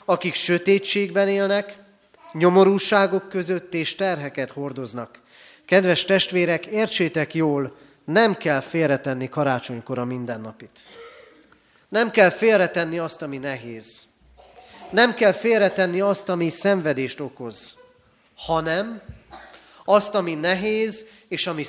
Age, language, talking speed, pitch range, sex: 30-49, Hungarian, 100 wpm, 140-200 Hz, male